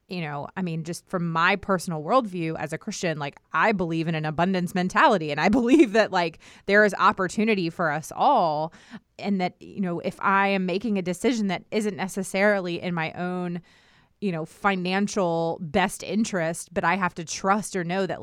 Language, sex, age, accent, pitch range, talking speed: English, female, 30-49, American, 160-195 Hz, 195 wpm